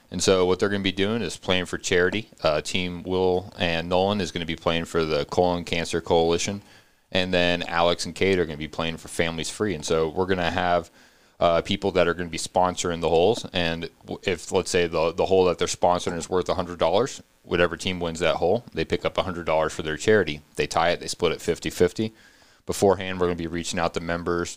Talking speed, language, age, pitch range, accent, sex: 235 wpm, English, 30-49, 85-95 Hz, American, male